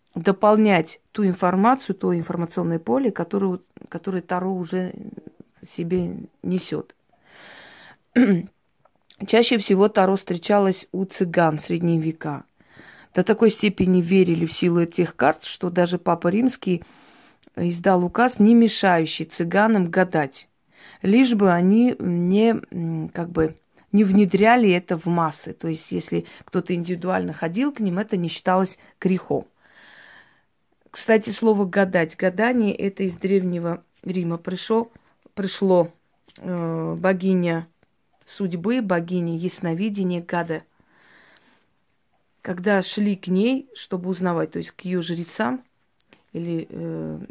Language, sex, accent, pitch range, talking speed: Russian, female, native, 170-200 Hz, 110 wpm